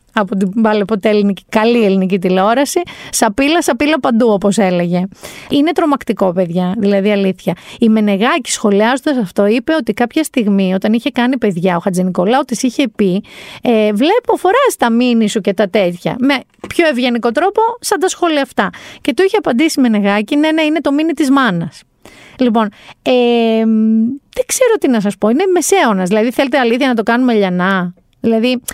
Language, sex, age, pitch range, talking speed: Greek, female, 30-49, 210-285 Hz, 155 wpm